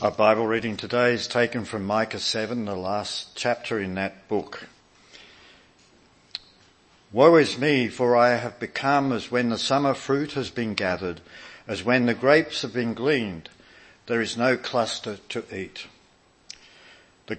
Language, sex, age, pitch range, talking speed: English, male, 60-79, 105-135 Hz, 150 wpm